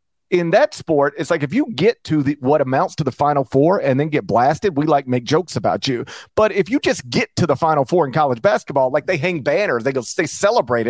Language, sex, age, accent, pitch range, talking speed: English, male, 40-59, American, 135-185 Hz, 255 wpm